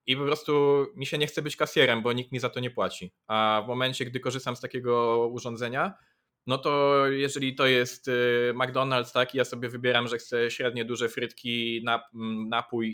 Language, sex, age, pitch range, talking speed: Polish, male, 20-39, 120-140 Hz, 190 wpm